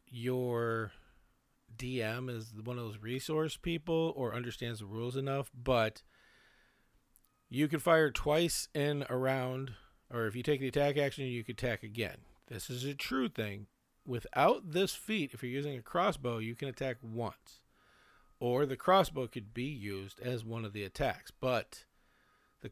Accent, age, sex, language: American, 40-59, male, English